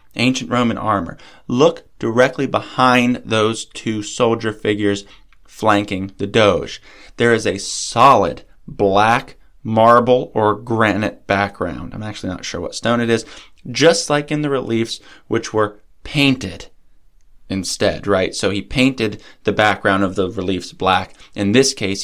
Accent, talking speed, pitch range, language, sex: American, 140 wpm, 100-120 Hz, English, male